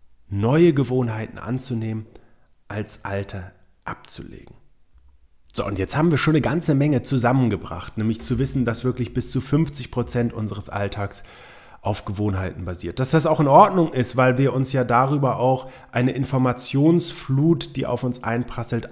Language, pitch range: German, 115-145 Hz